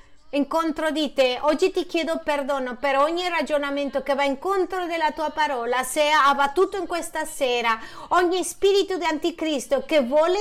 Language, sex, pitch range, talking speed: Spanish, female, 280-345 Hz, 160 wpm